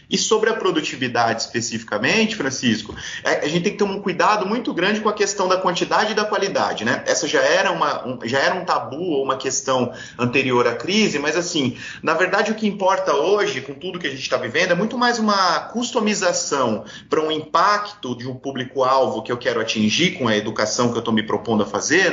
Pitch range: 120-180 Hz